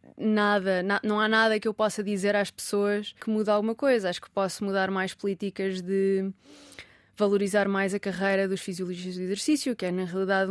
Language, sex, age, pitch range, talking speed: Portuguese, female, 20-39, 195-215 Hz, 195 wpm